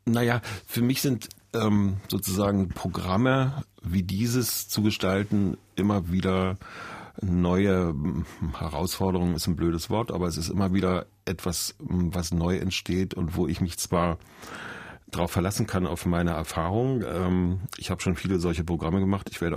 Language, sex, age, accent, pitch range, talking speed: German, male, 40-59, German, 85-100 Hz, 145 wpm